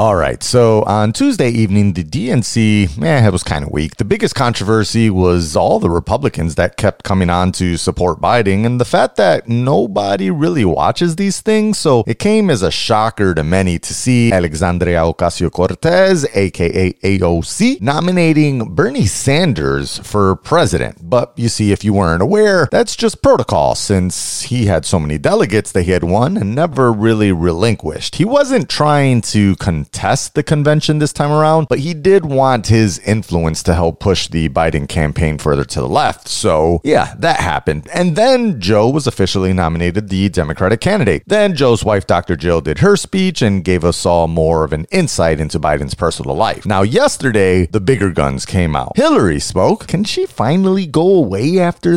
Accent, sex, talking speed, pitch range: American, male, 180 wpm, 85-140 Hz